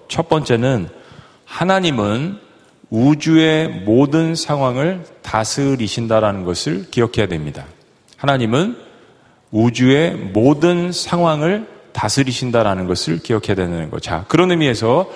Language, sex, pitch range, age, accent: Korean, male, 105-150 Hz, 40-59, native